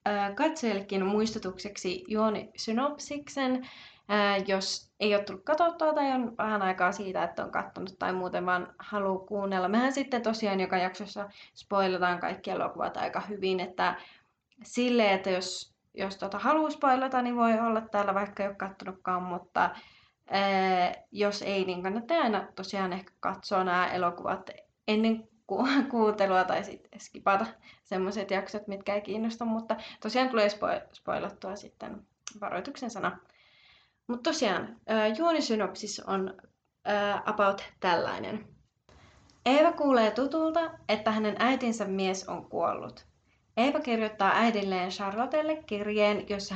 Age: 20-39